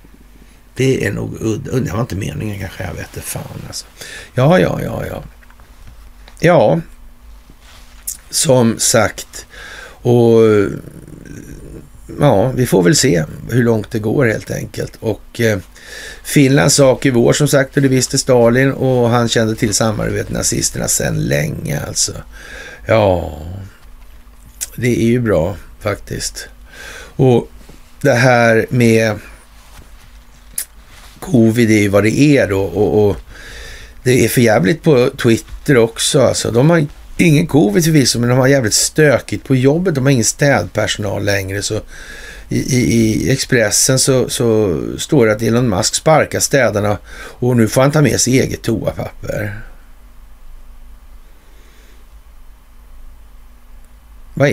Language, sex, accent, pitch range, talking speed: Swedish, male, native, 80-130 Hz, 130 wpm